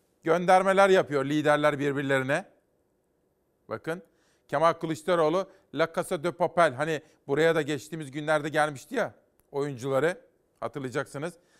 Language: Turkish